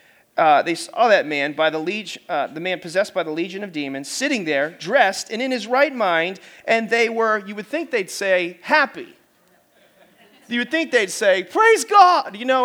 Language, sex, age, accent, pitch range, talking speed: English, male, 40-59, American, 185-255 Hz, 205 wpm